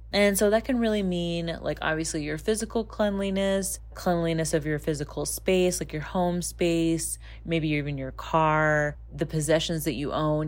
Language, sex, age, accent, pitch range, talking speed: English, female, 20-39, American, 155-185 Hz, 165 wpm